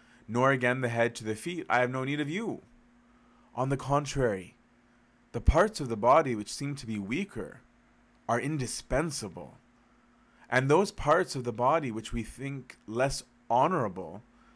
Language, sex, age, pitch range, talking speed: English, male, 20-39, 115-135 Hz, 160 wpm